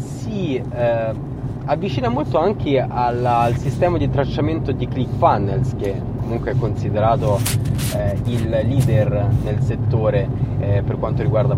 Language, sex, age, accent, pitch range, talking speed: Italian, male, 20-39, native, 120-130 Hz, 130 wpm